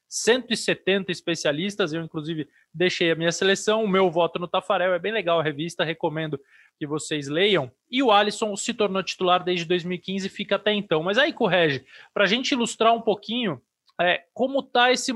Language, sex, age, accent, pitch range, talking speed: Portuguese, male, 20-39, Brazilian, 170-215 Hz, 180 wpm